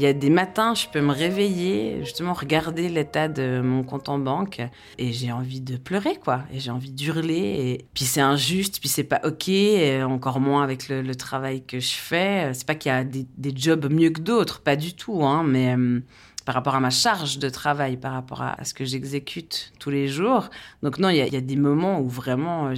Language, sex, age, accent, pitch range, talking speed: French, female, 30-49, French, 135-190 Hz, 235 wpm